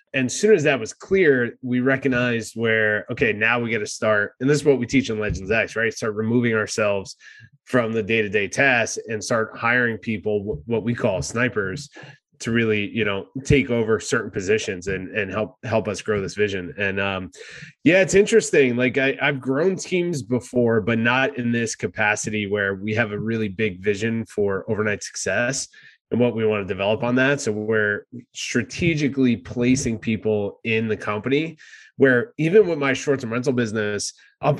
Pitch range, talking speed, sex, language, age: 110-135 Hz, 185 wpm, male, English, 20-39